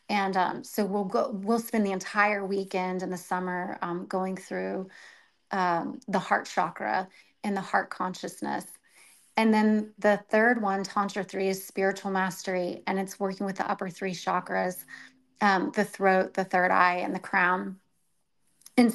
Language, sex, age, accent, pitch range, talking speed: English, female, 30-49, American, 185-205 Hz, 165 wpm